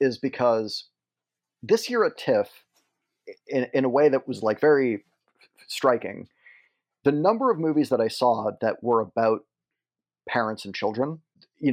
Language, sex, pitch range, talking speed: English, male, 100-135 Hz, 150 wpm